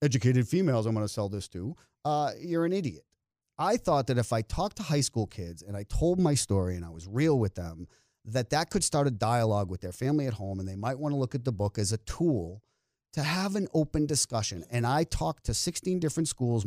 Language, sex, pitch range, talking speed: English, male, 110-155 Hz, 245 wpm